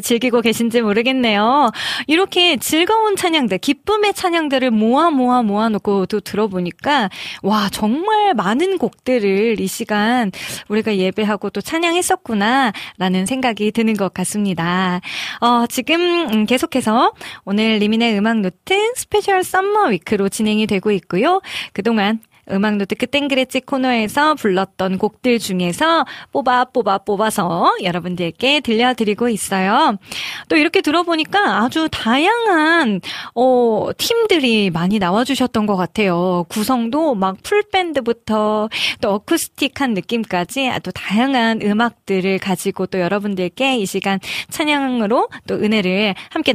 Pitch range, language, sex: 205-275 Hz, Korean, female